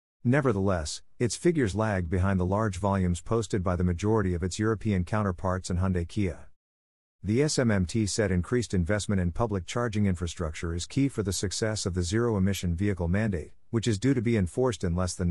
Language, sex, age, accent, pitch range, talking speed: English, male, 50-69, American, 90-115 Hz, 180 wpm